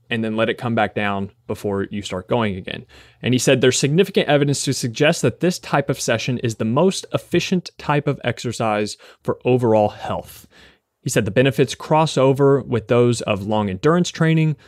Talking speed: 190 wpm